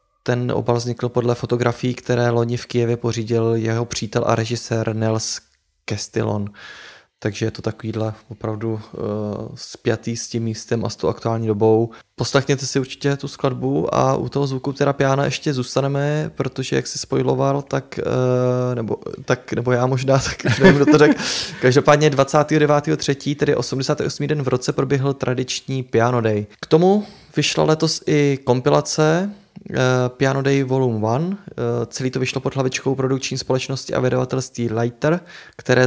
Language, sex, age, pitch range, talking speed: Czech, male, 20-39, 120-140 Hz, 150 wpm